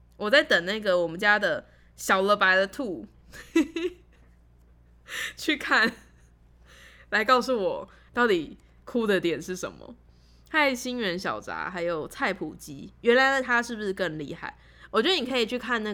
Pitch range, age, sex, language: 140-240 Hz, 10-29, female, Chinese